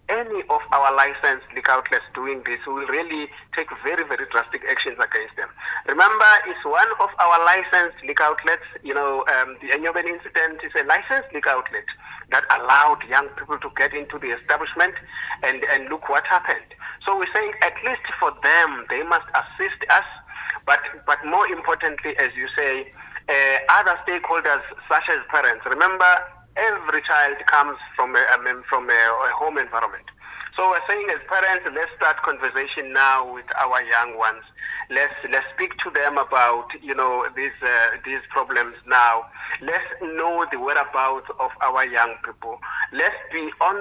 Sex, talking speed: male, 165 wpm